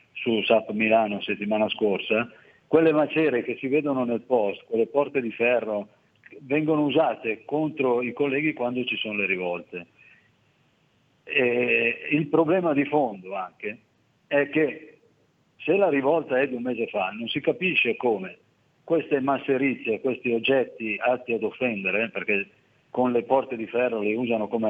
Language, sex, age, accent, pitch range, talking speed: Italian, male, 50-69, native, 110-150 Hz, 150 wpm